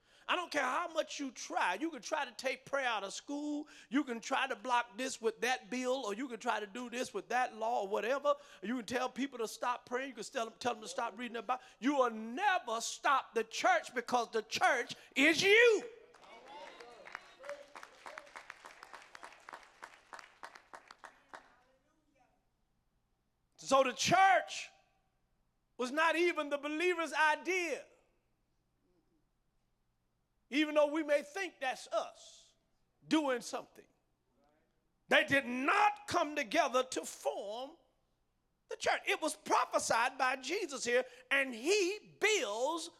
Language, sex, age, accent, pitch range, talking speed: English, male, 40-59, American, 240-305 Hz, 140 wpm